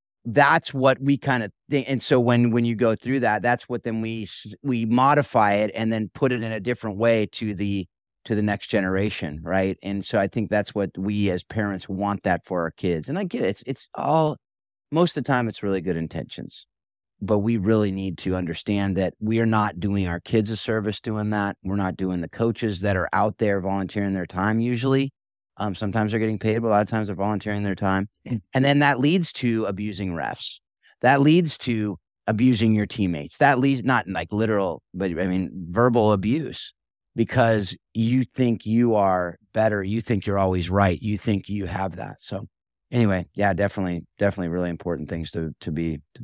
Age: 30-49